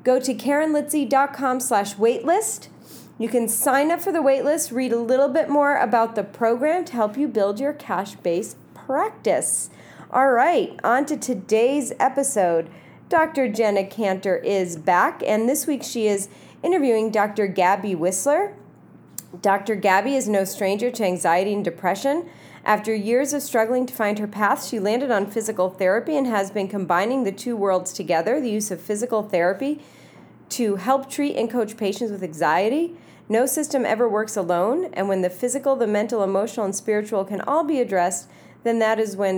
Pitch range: 190-255 Hz